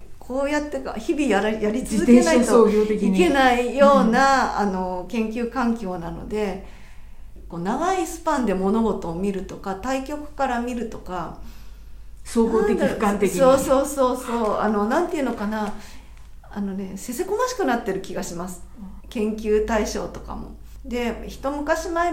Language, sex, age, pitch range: Japanese, female, 50-69, 195-275 Hz